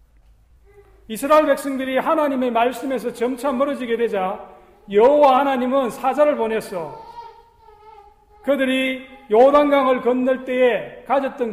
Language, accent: Korean, native